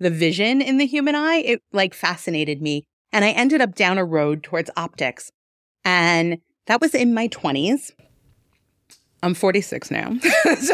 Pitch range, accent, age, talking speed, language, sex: 165-235 Hz, American, 30-49, 160 wpm, English, female